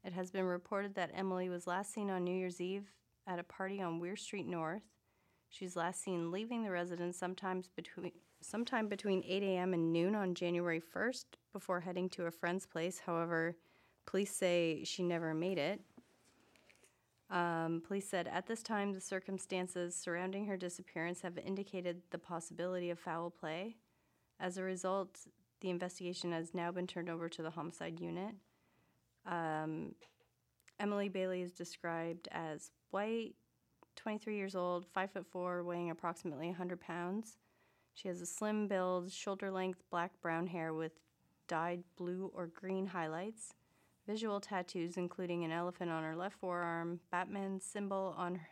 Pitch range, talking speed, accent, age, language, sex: 170-190 Hz, 155 wpm, American, 30-49, English, female